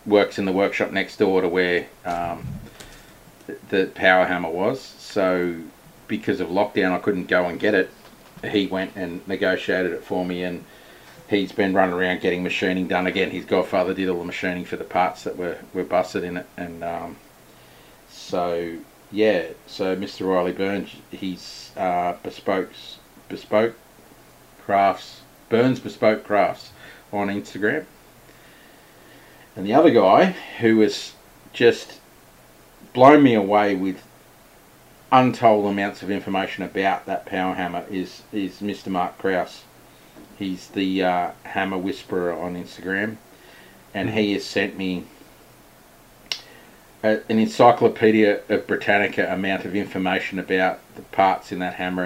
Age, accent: 30-49, Australian